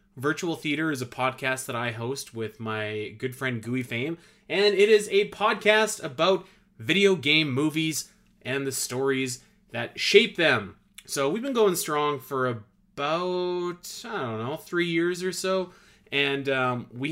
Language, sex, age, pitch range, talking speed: English, male, 20-39, 115-175 Hz, 160 wpm